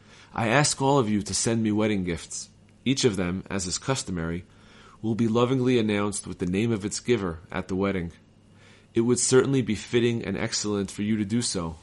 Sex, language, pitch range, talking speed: male, English, 95-110 Hz, 210 wpm